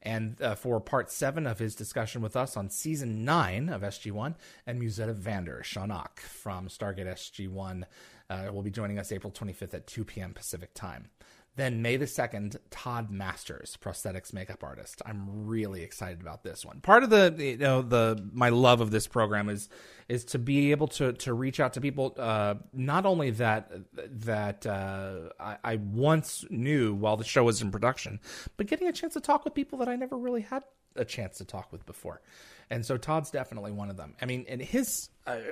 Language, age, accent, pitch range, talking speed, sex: English, 30-49, American, 100-130 Hz, 200 wpm, male